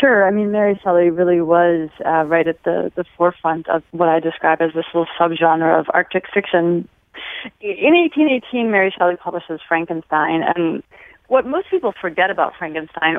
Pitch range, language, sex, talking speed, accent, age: 165-210 Hz, English, female, 170 wpm, American, 30-49